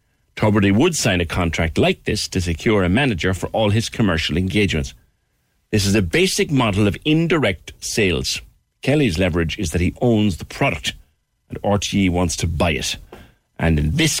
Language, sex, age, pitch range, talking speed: English, male, 60-79, 85-115 Hz, 175 wpm